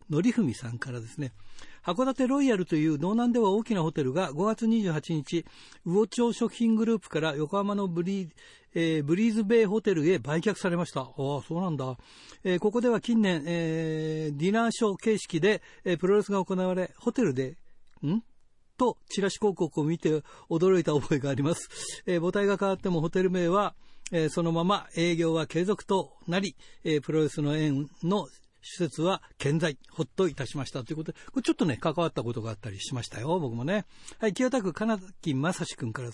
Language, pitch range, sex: Japanese, 150-205 Hz, male